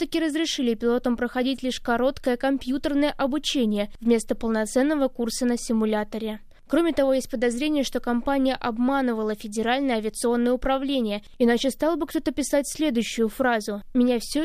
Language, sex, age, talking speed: Russian, female, 20-39, 135 wpm